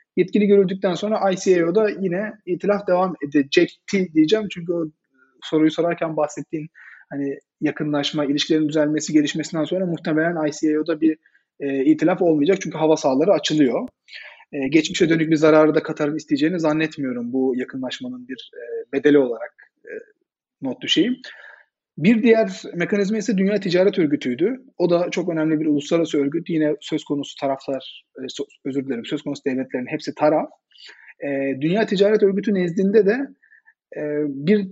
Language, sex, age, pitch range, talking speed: Turkish, male, 30-49, 150-200 Hz, 130 wpm